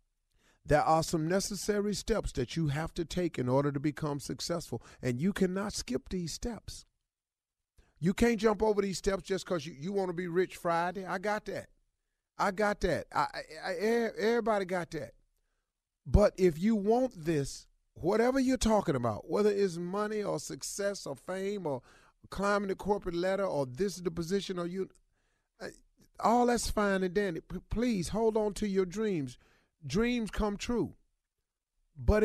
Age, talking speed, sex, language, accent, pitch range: 40-59, 170 wpm, male, English, American, 160-220 Hz